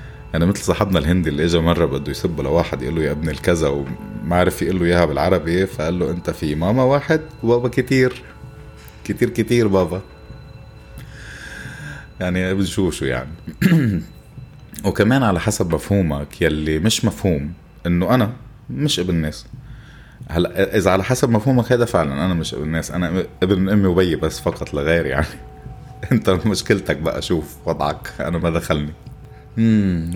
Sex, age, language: male, 30-49, Arabic